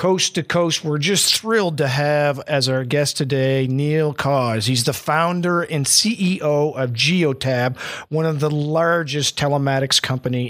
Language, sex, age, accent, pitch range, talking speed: English, male, 50-69, American, 135-160 Hz, 155 wpm